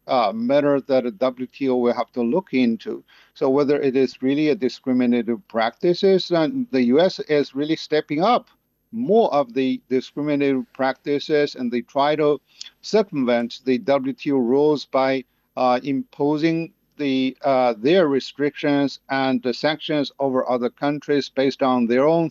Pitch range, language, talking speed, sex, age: 130-165 Hz, English, 150 wpm, male, 50-69